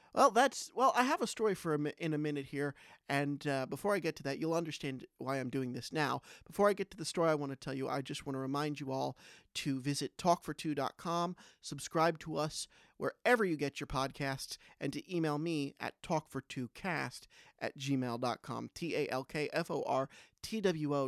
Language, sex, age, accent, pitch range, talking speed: English, male, 40-59, American, 135-165 Hz, 185 wpm